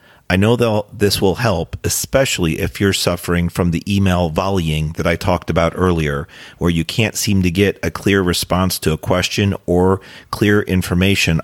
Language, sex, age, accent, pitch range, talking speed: English, male, 40-59, American, 85-110 Hz, 175 wpm